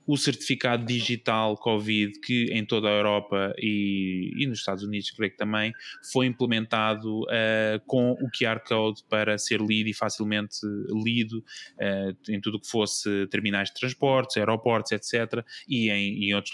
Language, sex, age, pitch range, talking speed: Portuguese, male, 20-39, 110-135 Hz, 155 wpm